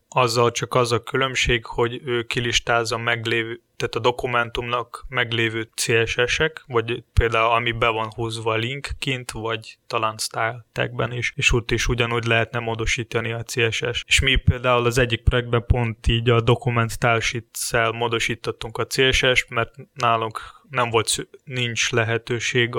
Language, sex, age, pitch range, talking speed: Hungarian, male, 20-39, 115-125 Hz, 140 wpm